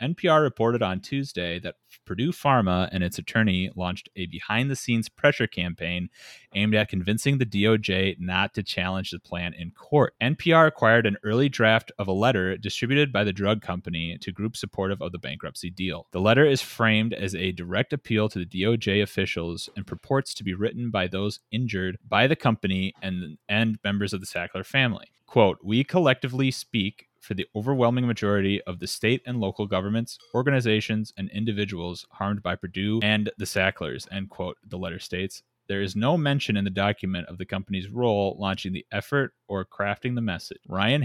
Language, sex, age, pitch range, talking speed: English, male, 30-49, 95-120 Hz, 180 wpm